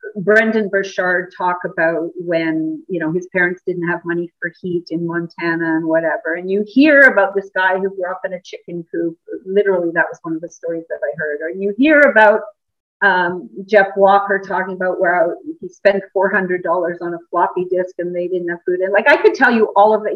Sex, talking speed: female, 215 wpm